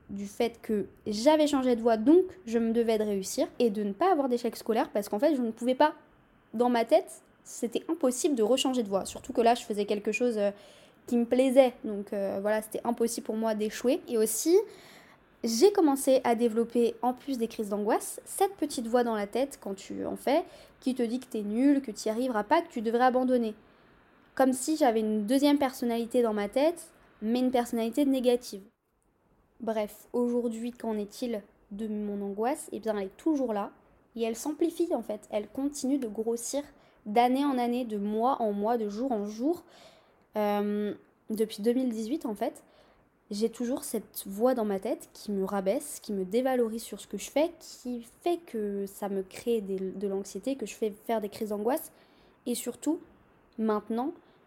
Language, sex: French, female